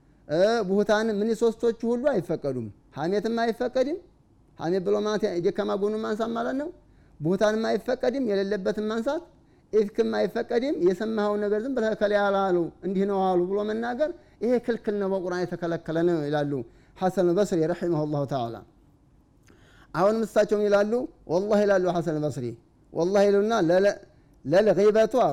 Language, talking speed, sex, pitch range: Amharic, 105 wpm, male, 170-215 Hz